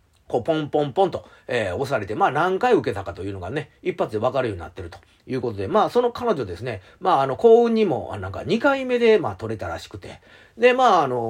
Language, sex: Japanese, male